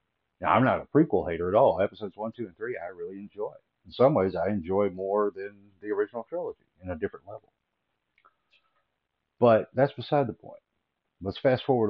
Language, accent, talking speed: English, American, 190 wpm